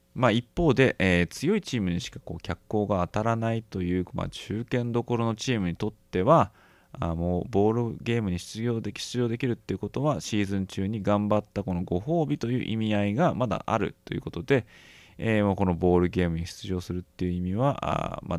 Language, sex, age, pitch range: Japanese, male, 20-39, 90-125 Hz